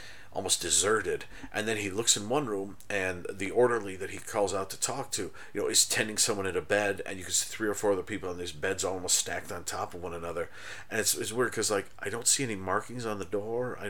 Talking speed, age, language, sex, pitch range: 265 wpm, 40-59, English, male, 90-115 Hz